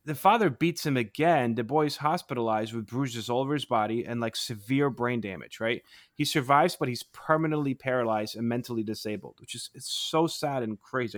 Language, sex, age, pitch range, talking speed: English, male, 30-49, 115-145 Hz, 195 wpm